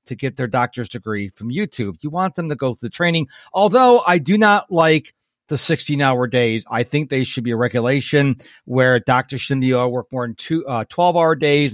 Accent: American